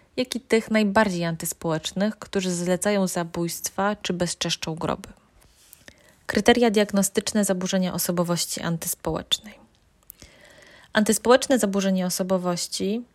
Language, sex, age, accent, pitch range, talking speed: Polish, female, 20-39, native, 185-215 Hz, 85 wpm